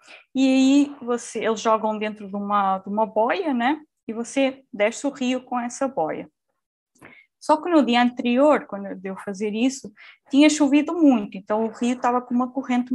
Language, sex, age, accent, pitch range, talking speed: Portuguese, female, 20-39, Brazilian, 215-290 Hz, 185 wpm